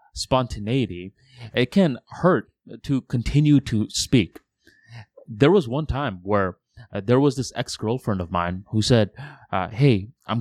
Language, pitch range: English, 95-130 Hz